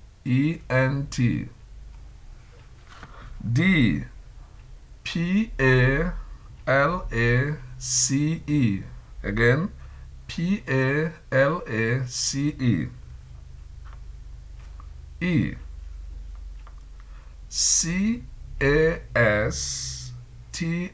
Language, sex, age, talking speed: English, male, 60-79, 70 wpm